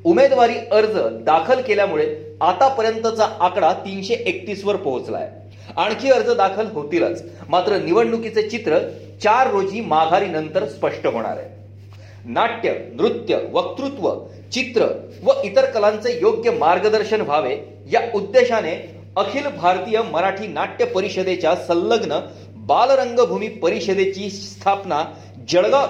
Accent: native